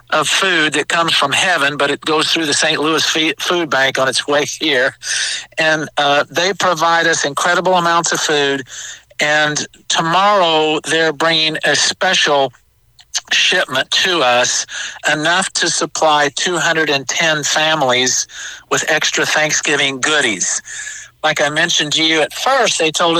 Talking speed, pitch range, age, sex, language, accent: 140 wpm, 145-170 Hz, 50-69, male, English, American